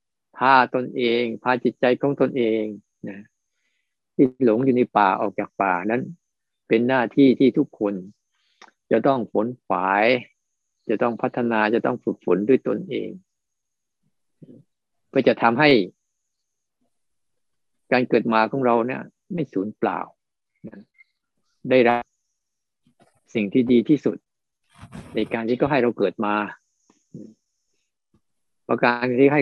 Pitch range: 105-130 Hz